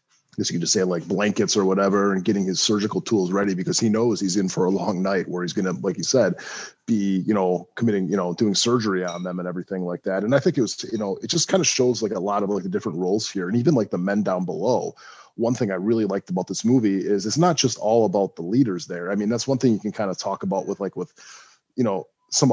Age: 20-39